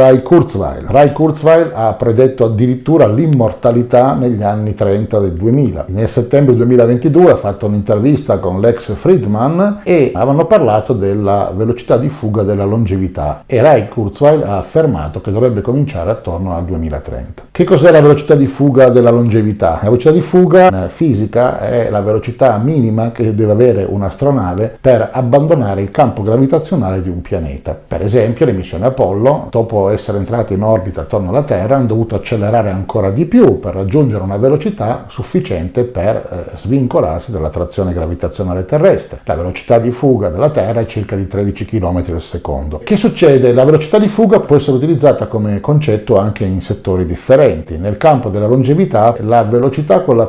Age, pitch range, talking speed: 50-69, 100-135 Hz, 165 wpm